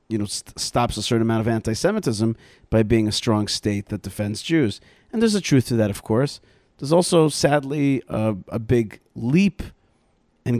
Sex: male